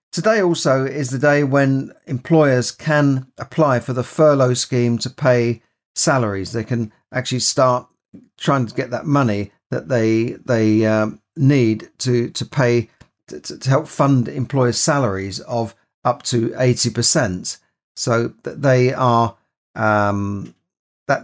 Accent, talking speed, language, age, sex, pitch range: British, 140 wpm, English, 40-59, male, 115-135 Hz